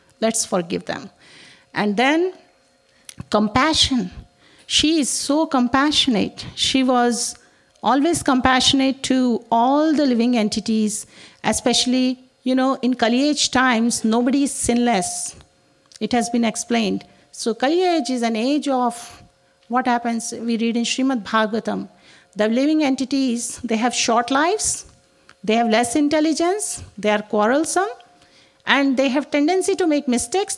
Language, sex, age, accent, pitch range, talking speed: English, female, 50-69, Indian, 235-290 Hz, 130 wpm